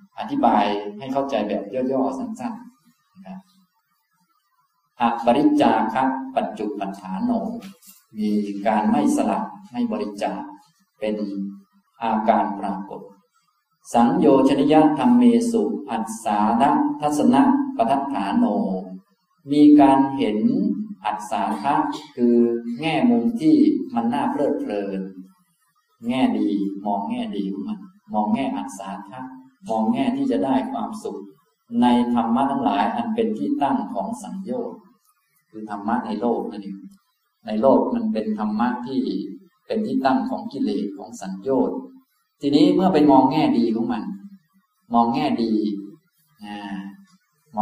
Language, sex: Thai, male